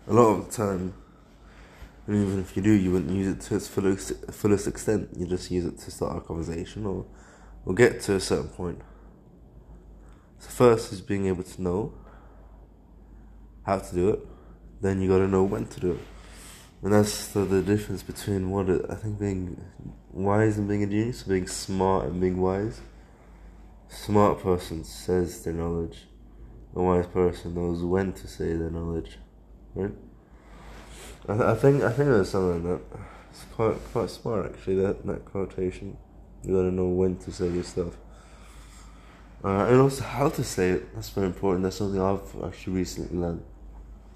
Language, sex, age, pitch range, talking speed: English, male, 20-39, 90-100 Hz, 180 wpm